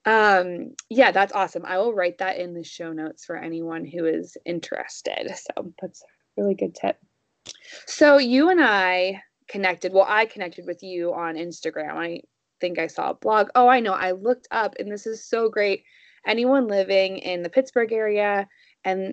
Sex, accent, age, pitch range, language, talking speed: female, American, 20-39, 180-245 Hz, English, 185 wpm